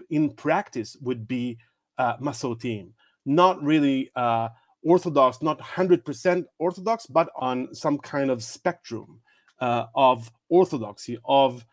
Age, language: 40-59, English